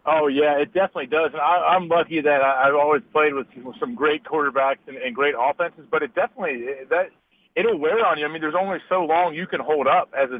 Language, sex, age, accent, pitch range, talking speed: English, male, 30-49, American, 140-170 Hz, 250 wpm